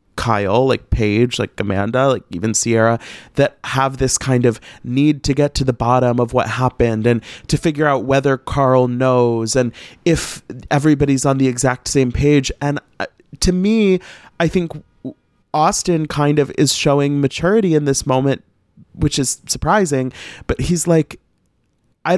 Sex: male